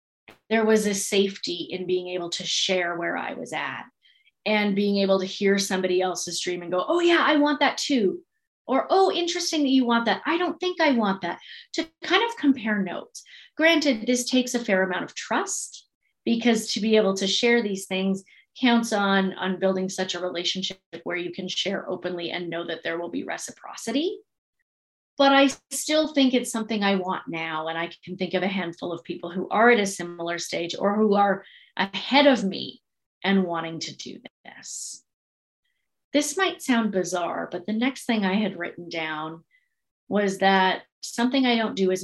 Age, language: 30-49, English